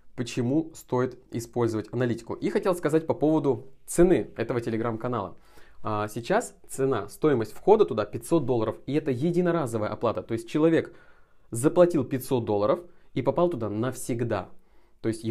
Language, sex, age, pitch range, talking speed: Russian, male, 20-39, 110-135 Hz, 135 wpm